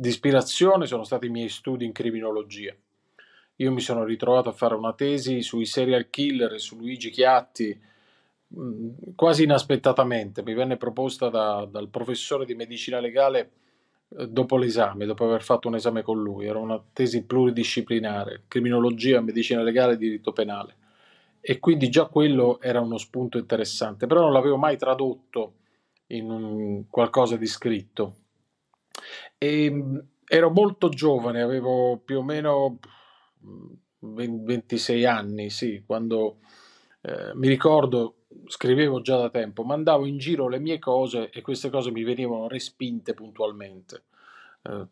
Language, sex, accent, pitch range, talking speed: Italian, male, native, 115-135 Hz, 140 wpm